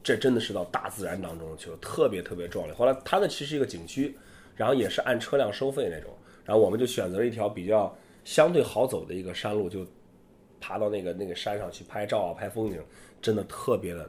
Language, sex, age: Chinese, male, 30-49